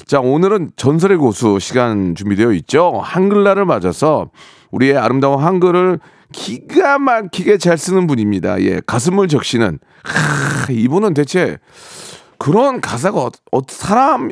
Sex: male